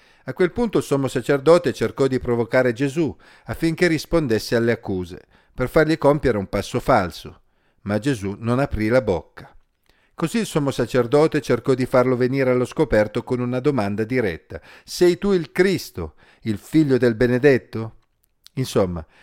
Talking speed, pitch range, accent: 155 wpm, 115-150 Hz, native